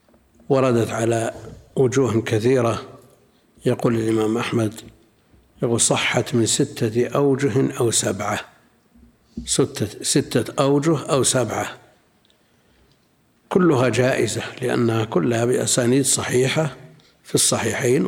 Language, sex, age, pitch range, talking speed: Arabic, male, 60-79, 120-145 Hz, 90 wpm